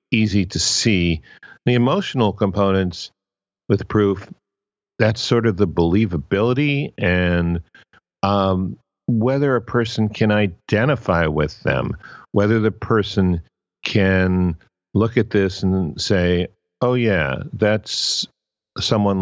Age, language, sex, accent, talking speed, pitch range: 50-69, English, male, American, 110 wpm, 90-115 Hz